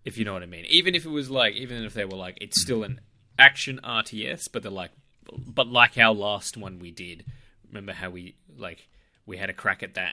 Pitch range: 100-130 Hz